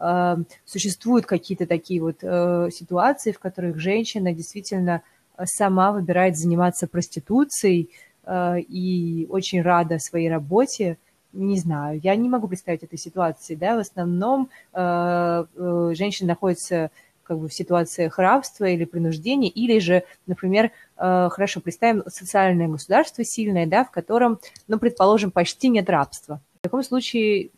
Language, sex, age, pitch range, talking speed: Russian, female, 20-39, 170-200 Hz, 125 wpm